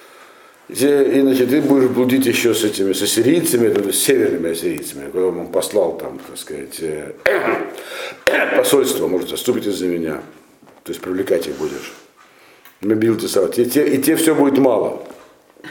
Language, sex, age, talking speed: Russian, male, 60-79, 155 wpm